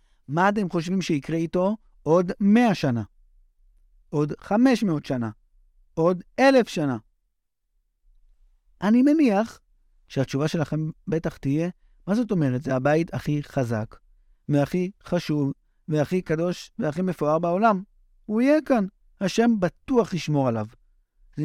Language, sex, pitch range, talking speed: Hebrew, male, 125-200 Hz, 120 wpm